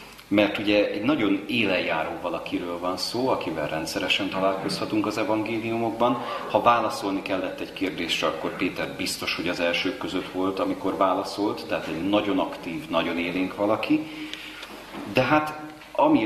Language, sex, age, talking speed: Hungarian, male, 40-59, 140 wpm